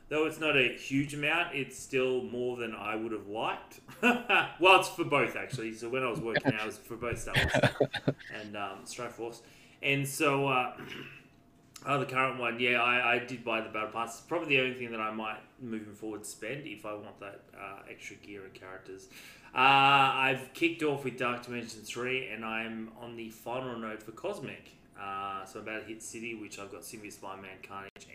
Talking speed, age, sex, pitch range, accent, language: 215 wpm, 20-39, male, 100-130 Hz, Australian, English